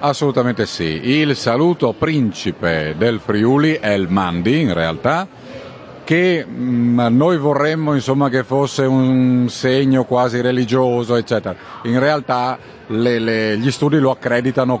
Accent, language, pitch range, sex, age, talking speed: native, Italian, 110-145 Hz, male, 50-69, 130 wpm